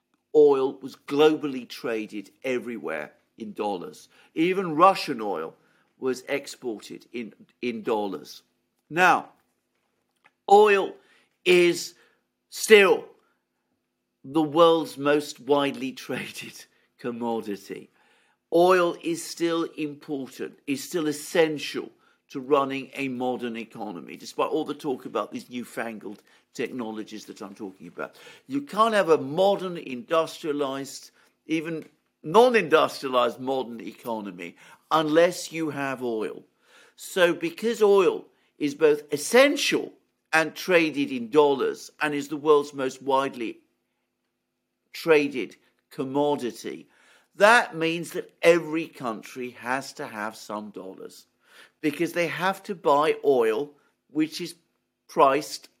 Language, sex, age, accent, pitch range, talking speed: English, male, 50-69, British, 130-185 Hz, 110 wpm